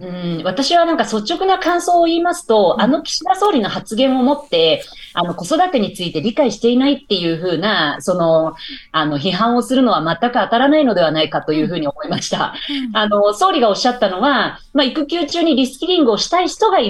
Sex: female